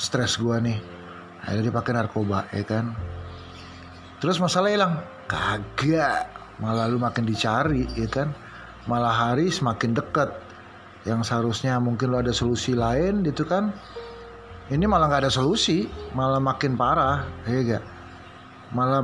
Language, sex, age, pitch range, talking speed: Indonesian, male, 30-49, 105-135 Hz, 130 wpm